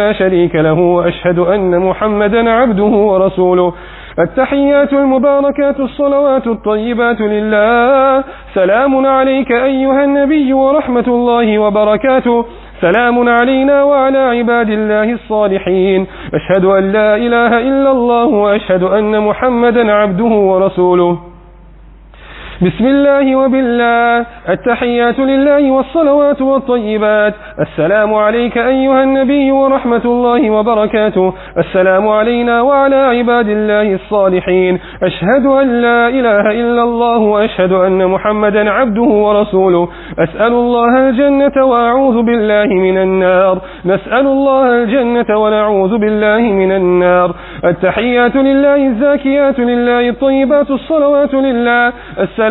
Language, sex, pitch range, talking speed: English, male, 195-265 Hz, 105 wpm